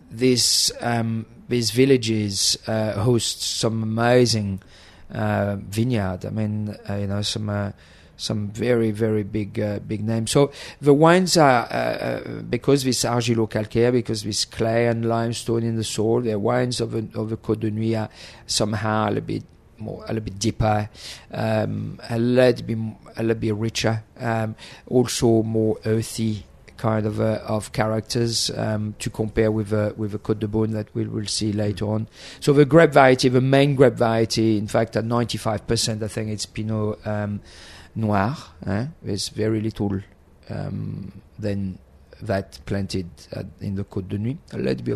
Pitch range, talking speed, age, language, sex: 100-115 Hz, 170 wpm, 40-59, English, male